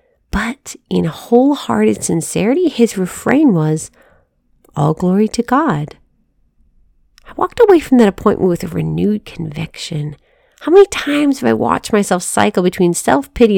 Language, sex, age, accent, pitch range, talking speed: English, female, 40-59, American, 165-240 Hz, 135 wpm